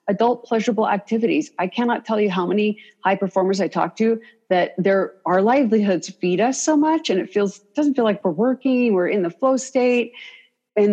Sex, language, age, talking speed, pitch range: female, English, 40-59, 200 wpm, 180-245 Hz